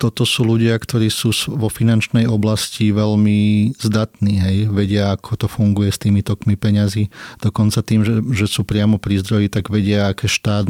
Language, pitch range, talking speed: Slovak, 105-115 Hz, 175 wpm